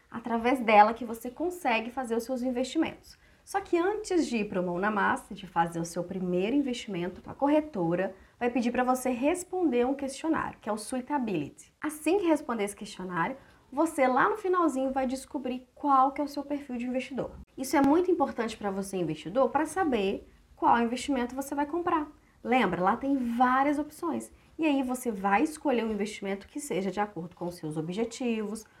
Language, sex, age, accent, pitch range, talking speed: Portuguese, female, 20-39, Brazilian, 205-280 Hz, 195 wpm